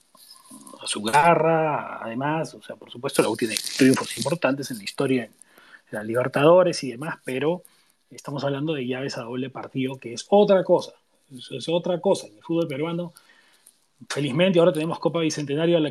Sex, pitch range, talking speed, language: male, 125-170 Hz, 180 wpm, Spanish